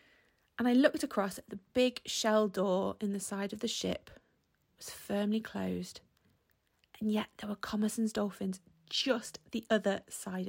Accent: British